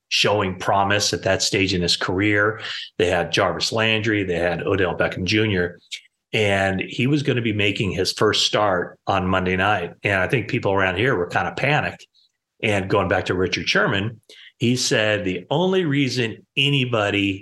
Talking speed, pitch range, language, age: 180 wpm, 100-130 Hz, English, 30-49